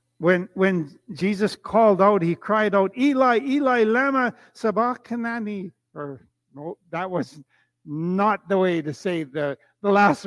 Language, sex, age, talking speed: English, male, 60-79, 140 wpm